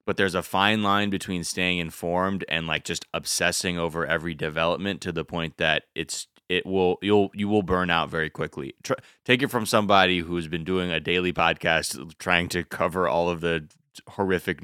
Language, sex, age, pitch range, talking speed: English, male, 20-39, 85-95 Hz, 195 wpm